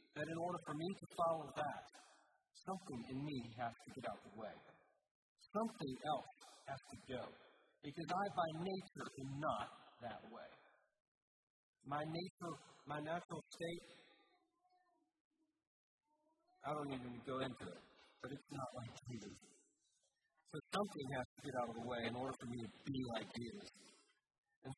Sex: male